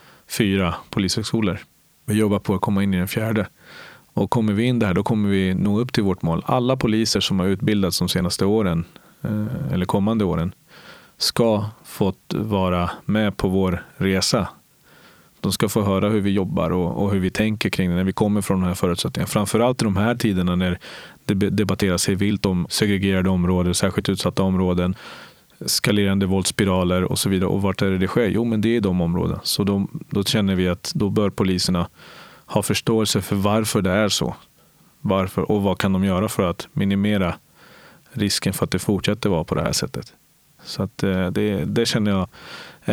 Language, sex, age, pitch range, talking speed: Swedish, male, 30-49, 95-105 Hz, 195 wpm